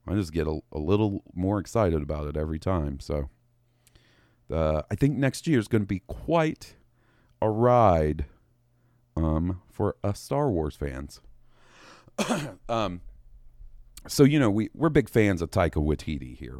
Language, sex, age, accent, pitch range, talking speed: English, male, 40-59, American, 80-110 Hz, 160 wpm